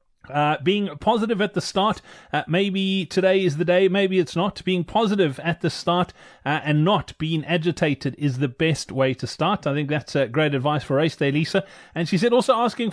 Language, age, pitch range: English, 30-49, 155-195 Hz